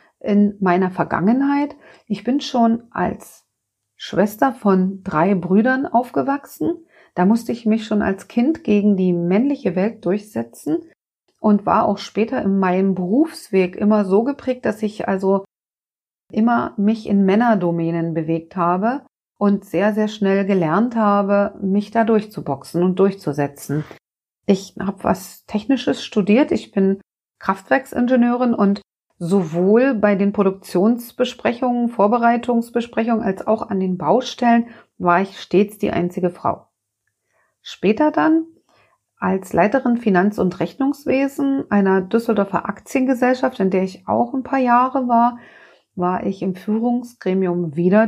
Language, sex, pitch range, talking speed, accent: German, female, 185-235 Hz, 125 wpm, German